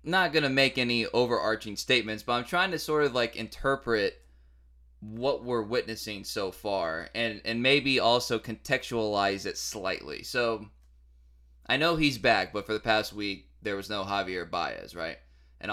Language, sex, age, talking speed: English, male, 20-39, 165 wpm